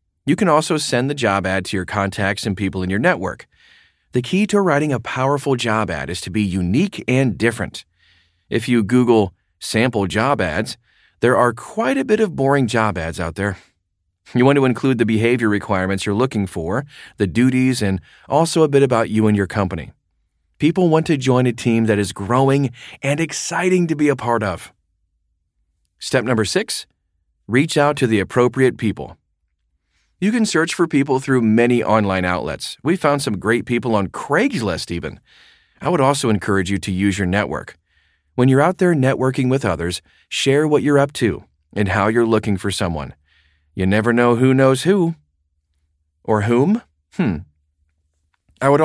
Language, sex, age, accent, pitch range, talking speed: English, male, 30-49, American, 95-135 Hz, 180 wpm